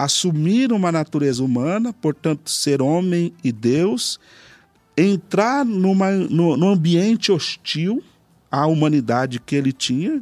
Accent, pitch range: Brazilian, 130-190 Hz